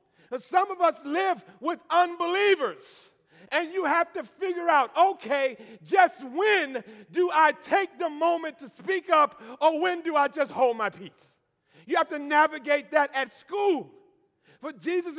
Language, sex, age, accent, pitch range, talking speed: English, male, 50-69, American, 205-330 Hz, 160 wpm